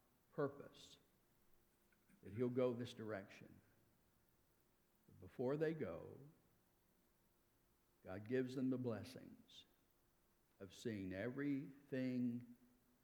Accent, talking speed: American, 80 wpm